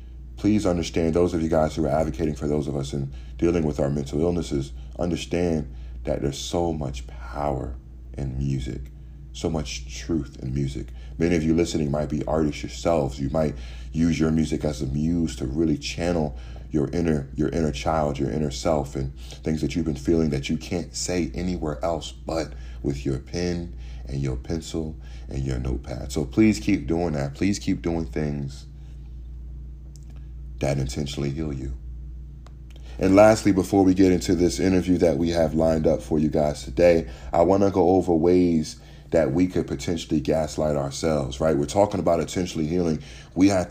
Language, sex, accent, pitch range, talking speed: English, male, American, 70-85 Hz, 180 wpm